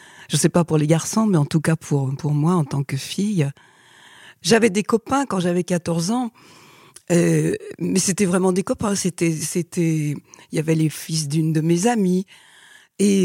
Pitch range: 165-220 Hz